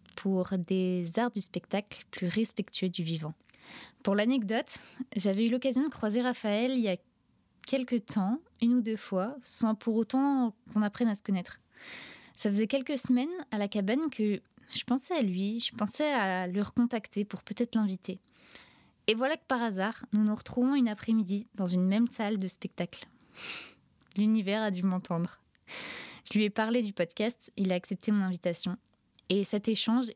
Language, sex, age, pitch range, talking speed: French, female, 20-39, 185-230 Hz, 175 wpm